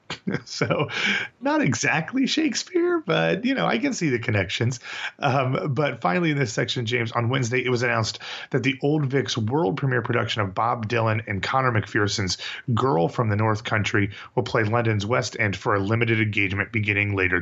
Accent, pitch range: American, 105-135 Hz